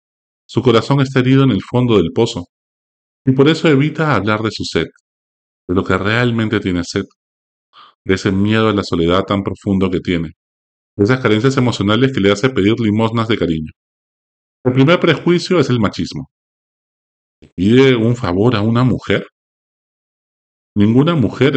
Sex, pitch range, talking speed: male, 95-125 Hz, 160 wpm